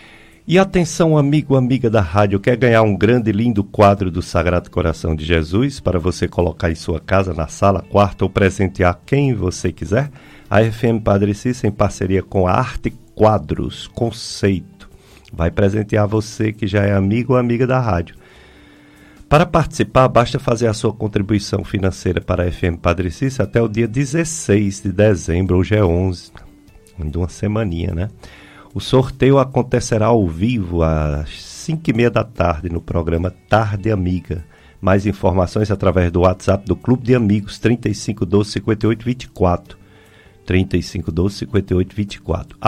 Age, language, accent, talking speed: 50-69, Portuguese, Brazilian, 150 wpm